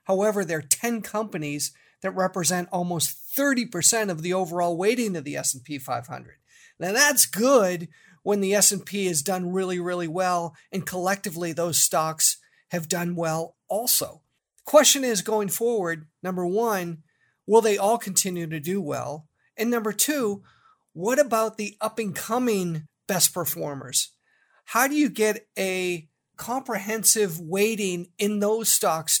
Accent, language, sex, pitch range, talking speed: American, English, male, 175-225 Hz, 140 wpm